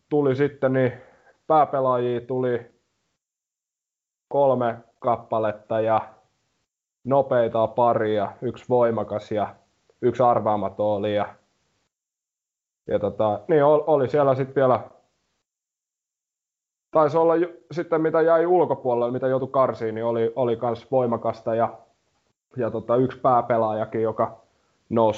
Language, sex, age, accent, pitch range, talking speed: Finnish, male, 20-39, native, 110-130 Hz, 110 wpm